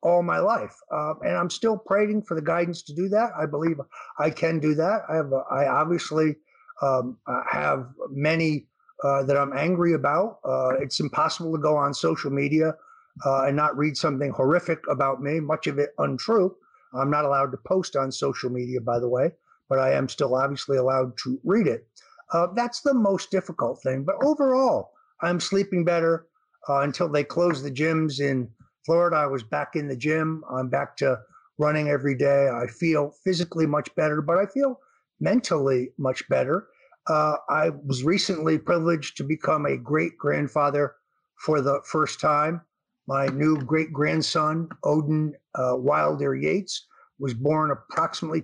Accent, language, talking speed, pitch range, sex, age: American, English, 175 wpm, 140-170 Hz, male, 50-69